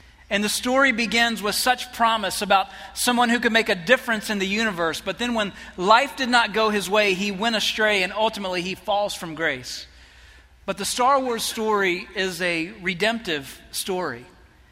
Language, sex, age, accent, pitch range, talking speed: English, male, 40-59, American, 190-225 Hz, 180 wpm